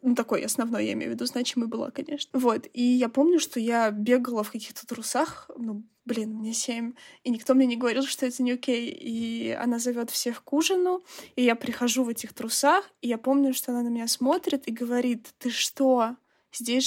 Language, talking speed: Russian, 205 wpm